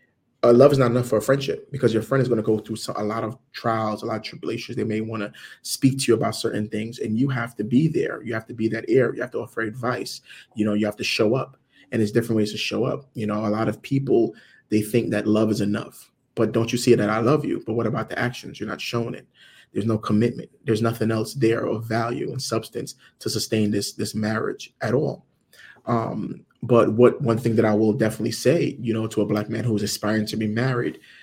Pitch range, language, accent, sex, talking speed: 110-120 Hz, English, American, male, 255 wpm